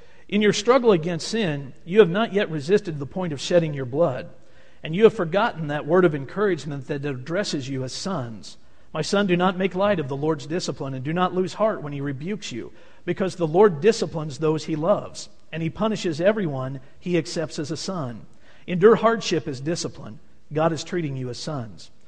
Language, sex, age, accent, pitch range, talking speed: English, male, 50-69, American, 145-185 Hz, 200 wpm